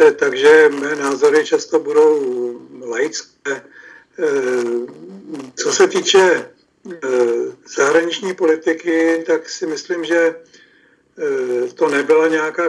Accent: native